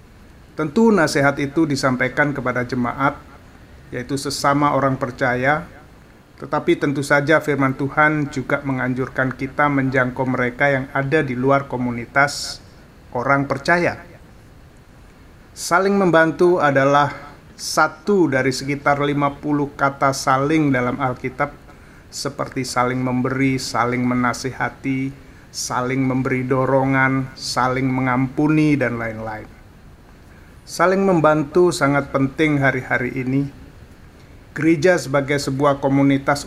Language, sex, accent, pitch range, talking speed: Indonesian, male, native, 130-145 Hz, 100 wpm